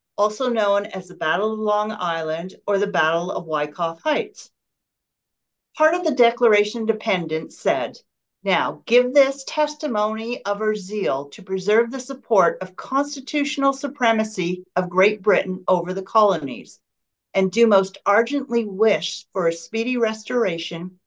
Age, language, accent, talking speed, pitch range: 50-69, English, American, 140 wpm, 190-235 Hz